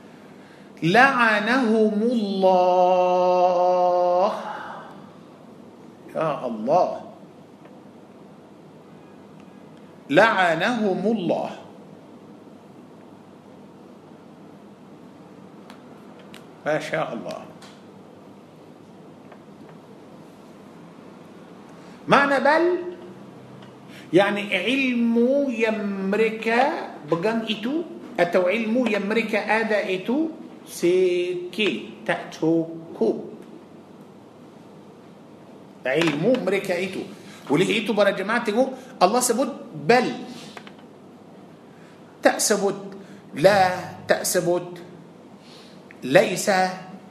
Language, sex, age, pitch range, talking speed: Malay, male, 50-69, 190-255 Hz, 45 wpm